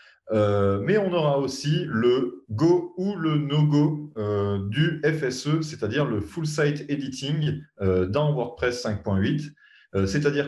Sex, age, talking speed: male, 30-49, 130 wpm